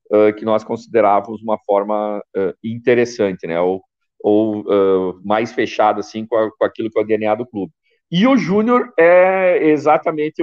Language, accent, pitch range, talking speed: Portuguese, Brazilian, 110-155 Hz, 165 wpm